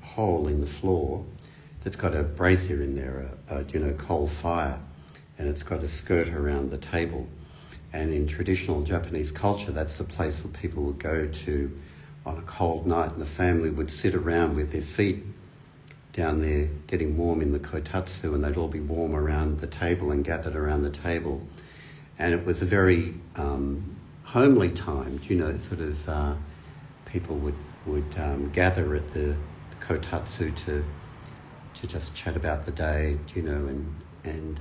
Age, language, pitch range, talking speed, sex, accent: 60-79, English, 75-90 Hz, 180 wpm, male, Australian